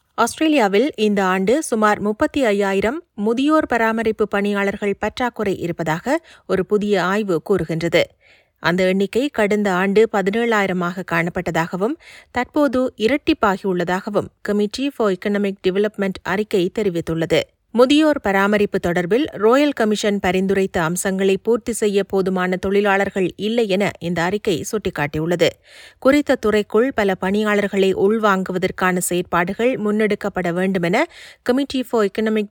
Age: 30-49